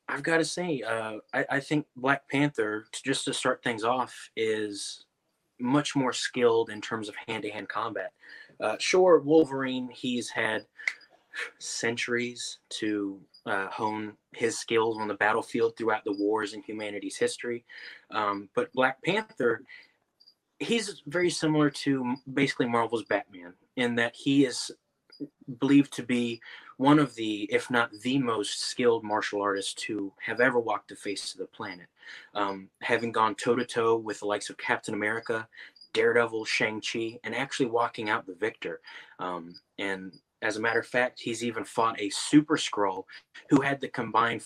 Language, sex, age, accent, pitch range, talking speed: English, male, 20-39, American, 105-140 Hz, 160 wpm